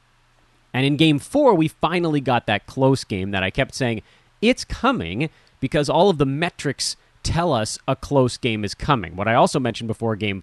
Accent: American